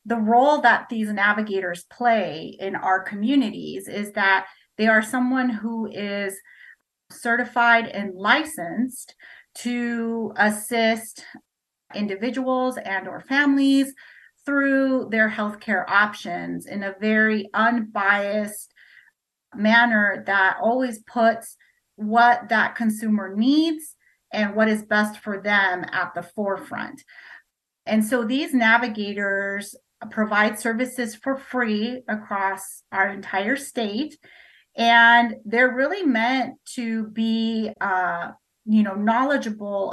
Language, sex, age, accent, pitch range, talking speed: English, female, 30-49, American, 205-245 Hz, 110 wpm